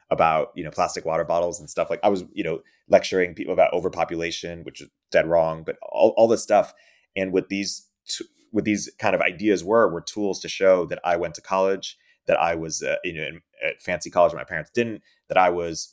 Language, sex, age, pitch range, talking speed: English, male, 30-49, 85-95 Hz, 230 wpm